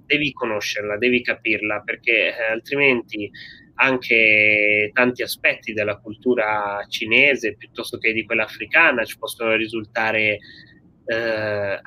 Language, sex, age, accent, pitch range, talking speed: Italian, male, 20-39, native, 105-125 Hz, 110 wpm